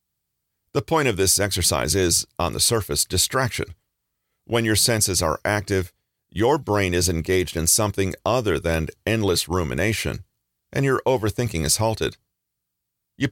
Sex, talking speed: male, 140 wpm